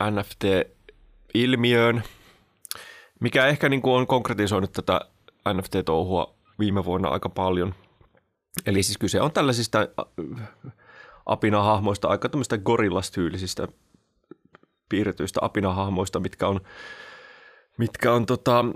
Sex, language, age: male, Finnish, 20-39